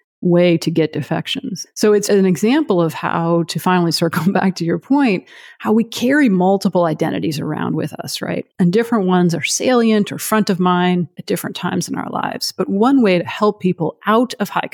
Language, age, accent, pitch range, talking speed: English, 30-49, American, 170-210 Hz, 205 wpm